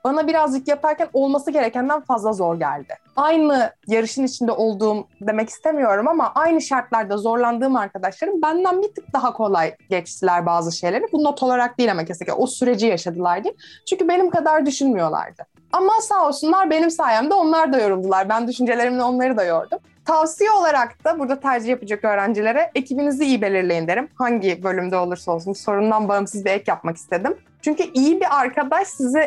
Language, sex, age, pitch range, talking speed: Turkish, female, 20-39, 210-290 Hz, 165 wpm